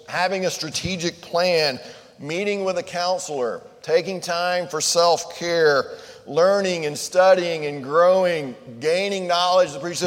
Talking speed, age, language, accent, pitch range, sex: 125 wpm, 40-59, English, American, 135-190 Hz, male